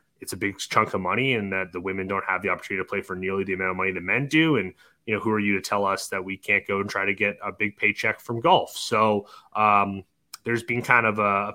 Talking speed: 280 wpm